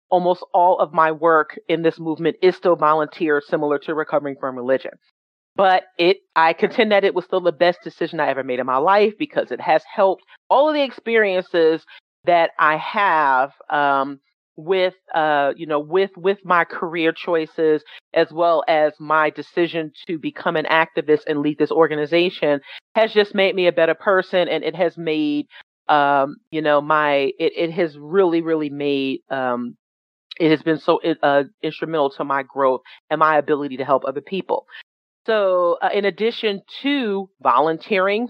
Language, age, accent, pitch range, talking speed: English, 40-59, American, 150-190 Hz, 175 wpm